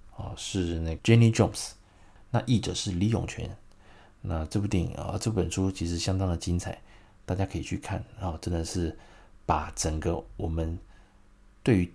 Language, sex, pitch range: Chinese, male, 85-110 Hz